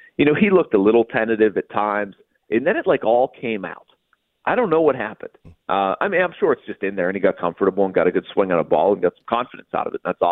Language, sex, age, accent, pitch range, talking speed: English, male, 40-59, American, 100-150 Hz, 295 wpm